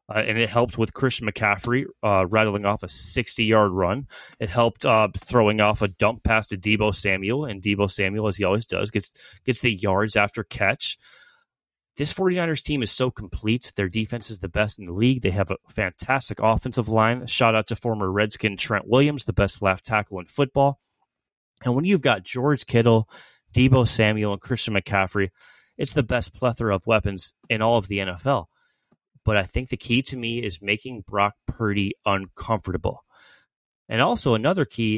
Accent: American